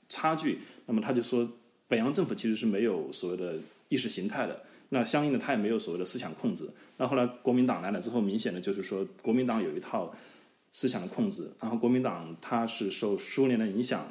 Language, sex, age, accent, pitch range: Chinese, male, 20-39, native, 115-150 Hz